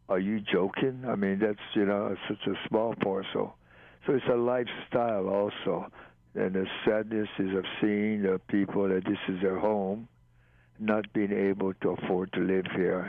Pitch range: 95-100 Hz